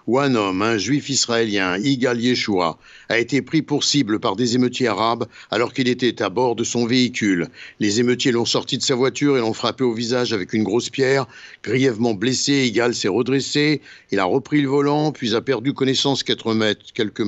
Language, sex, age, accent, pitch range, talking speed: Italian, male, 60-79, French, 110-135 Hz, 195 wpm